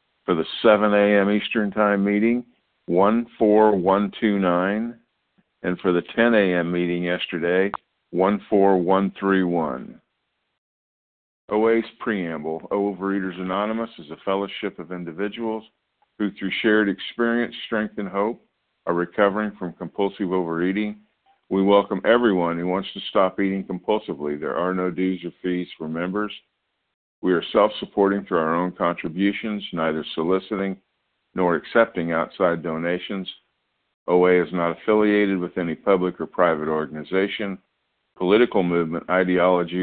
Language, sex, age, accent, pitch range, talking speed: English, male, 50-69, American, 90-105 Hz, 120 wpm